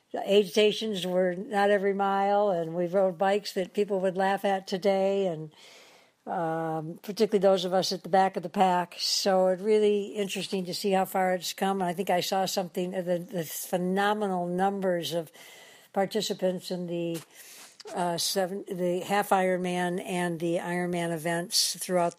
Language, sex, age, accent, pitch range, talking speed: English, female, 60-79, American, 180-205 Hz, 170 wpm